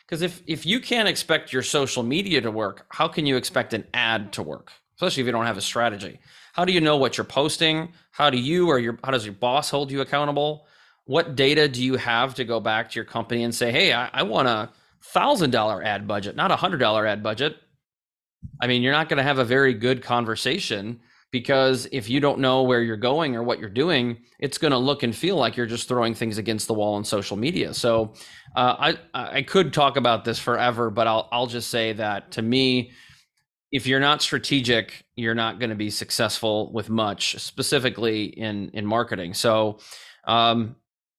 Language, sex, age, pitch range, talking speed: English, male, 30-49, 115-140 Hz, 210 wpm